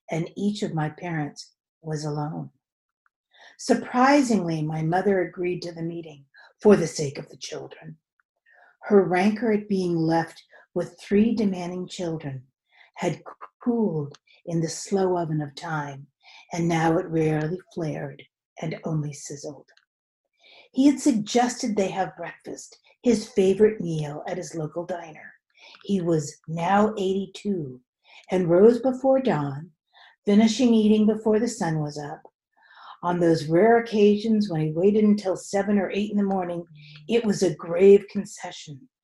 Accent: American